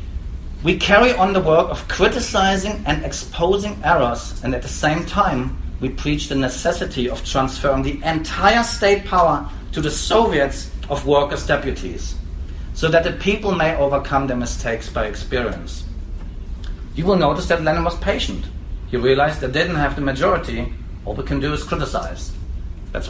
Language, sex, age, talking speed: English, male, 40-59, 165 wpm